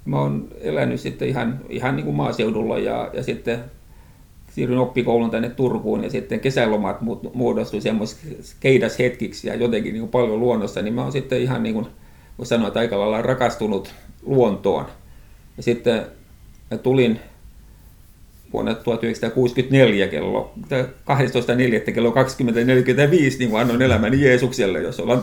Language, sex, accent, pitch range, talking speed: Finnish, male, native, 110-130 Hz, 135 wpm